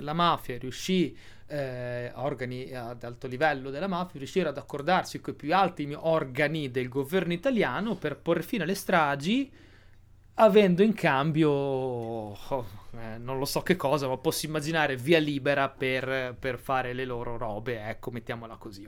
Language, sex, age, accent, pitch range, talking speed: Italian, male, 30-49, native, 125-180 Hz, 155 wpm